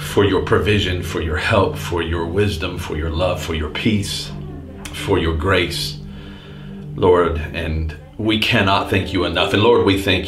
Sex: male